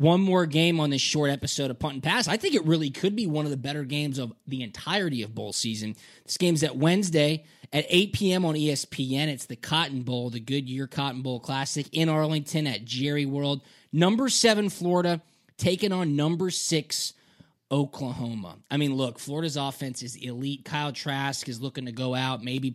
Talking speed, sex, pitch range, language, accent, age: 200 wpm, male, 130-165 Hz, English, American, 20-39